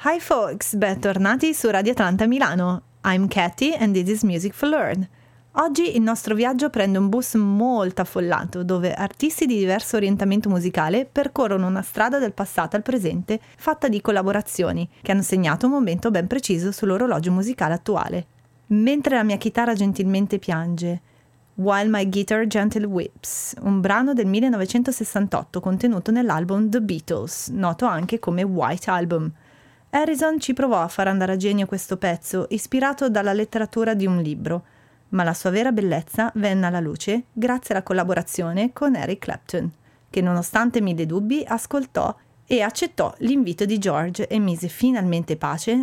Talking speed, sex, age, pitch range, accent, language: 155 wpm, female, 30-49, 180-230 Hz, native, Italian